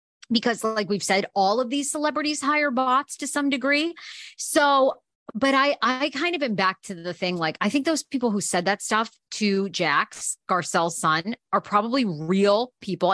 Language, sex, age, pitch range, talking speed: English, female, 30-49, 185-275 Hz, 185 wpm